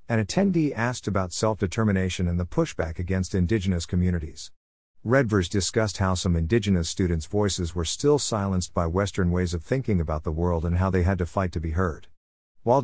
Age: 50-69